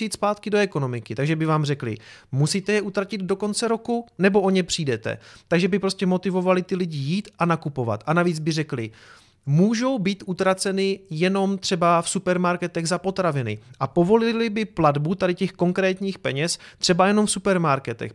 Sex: male